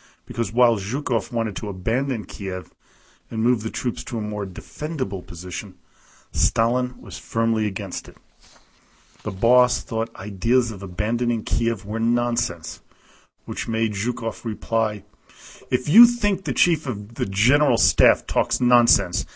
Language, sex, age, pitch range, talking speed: English, male, 40-59, 105-125 Hz, 140 wpm